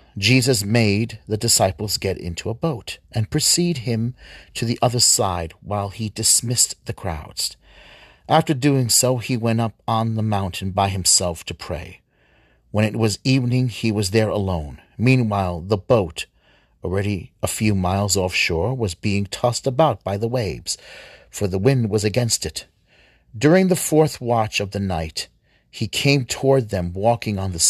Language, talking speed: English, 165 wpm